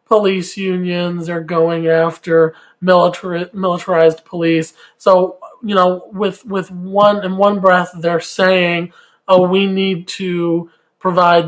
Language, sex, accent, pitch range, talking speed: English, male, American, 165-205 Hz, 125 wpm